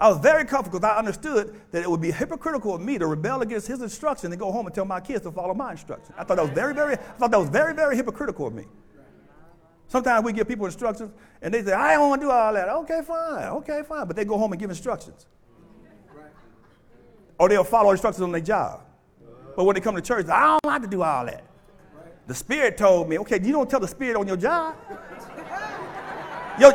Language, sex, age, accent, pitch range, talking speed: English, male, 50-69, American, 200-295 Hz, 240 wpm